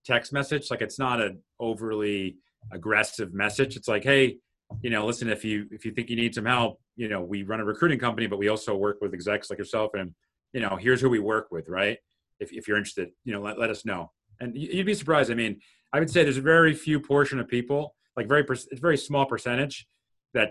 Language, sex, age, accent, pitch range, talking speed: English, male, 30-49, American, 110-145 Hz, 235 wpm